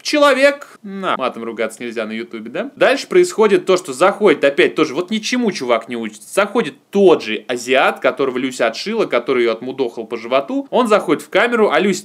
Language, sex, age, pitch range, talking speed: Russian, male, 20-39, 130-210 Hz, 190 wpm